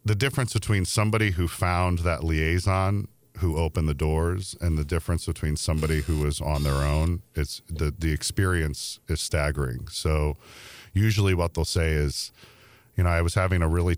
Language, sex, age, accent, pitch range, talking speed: English, male, 40-59, American, 75-90 Hz, 175 wpm